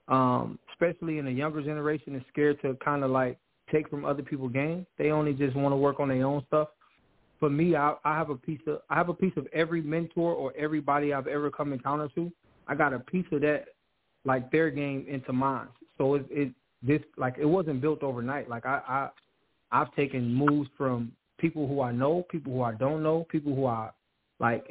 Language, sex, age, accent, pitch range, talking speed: English, male, 20-39, American, 135-155 Hz, 215 wpm